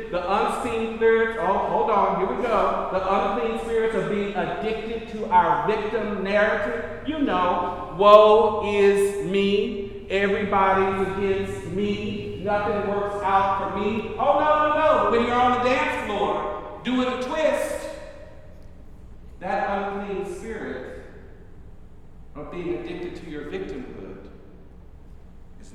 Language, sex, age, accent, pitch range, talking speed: English, male, 50-69, American, 135-220 Hz, 130 wpm